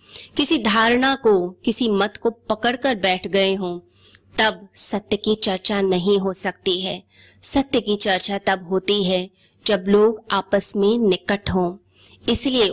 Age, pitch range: 20-39, 190-230 Hz